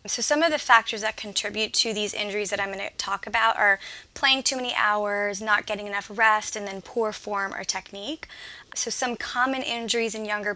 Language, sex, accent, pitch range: English, female, American, 205-245 Hz